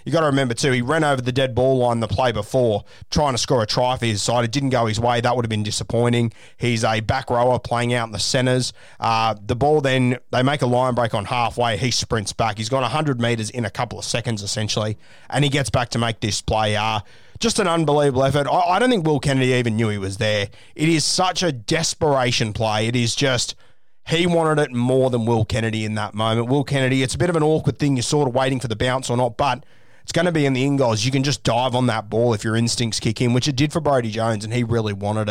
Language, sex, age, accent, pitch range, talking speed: English, male, 20-39, Australian, 115-140 Hz, 270 wpm